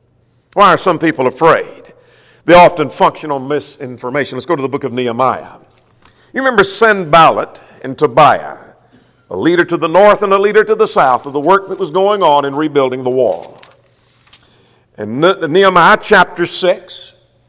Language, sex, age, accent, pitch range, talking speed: English, male, 50-69, American, 170-220 Hz, 165 wpm